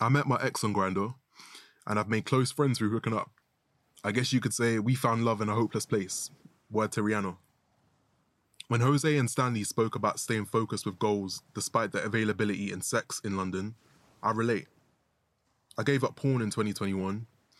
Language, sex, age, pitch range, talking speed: English, male, 20-39, 105-125 Hz, 185 wpm